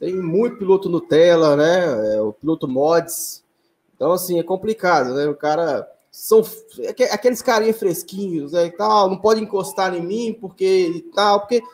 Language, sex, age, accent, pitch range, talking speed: Portuguese, male, 20-39, Brazilian, 165-230 Hz, 175 wpm